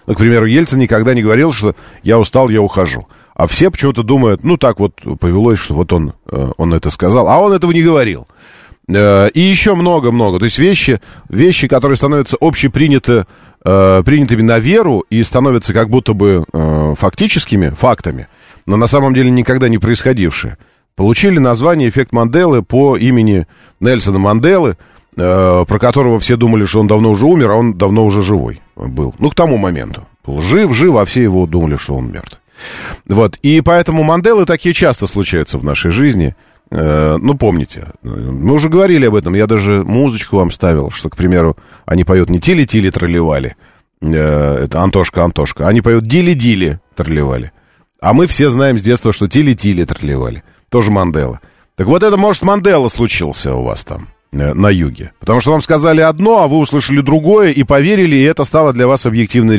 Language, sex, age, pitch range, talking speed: Russian, male, 40-59, 90-140 Hz, 170 wpm